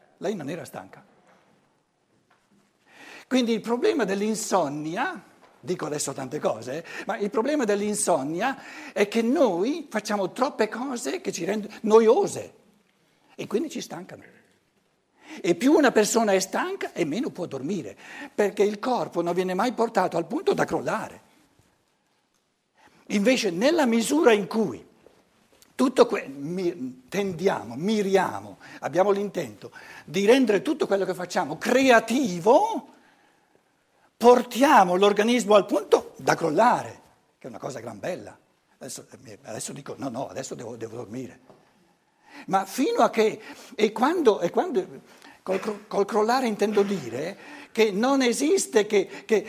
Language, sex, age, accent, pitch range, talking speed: Italian, male, 60-79, native, 190-245 Hz, 130 wpm